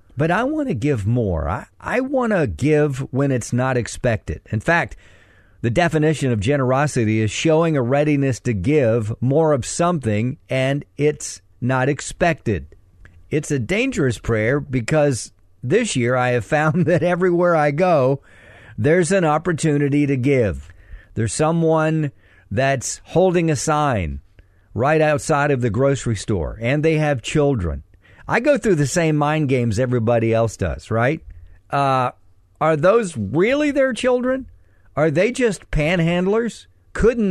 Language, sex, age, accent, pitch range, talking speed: English, male, 50-69, American, 100-160 Hz, 145 wpm